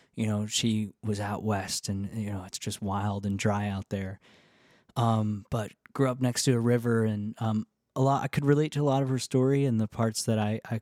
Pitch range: 105-125 Hz